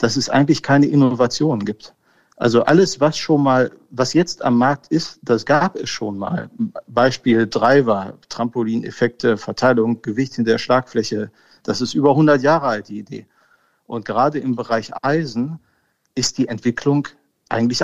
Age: 50-69